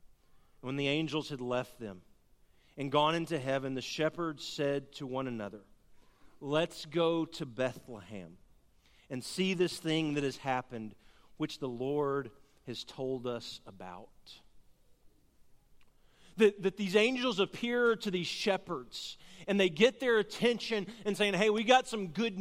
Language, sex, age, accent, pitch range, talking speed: English, male, 40-59, American, 155-245 Hz, 145 wpm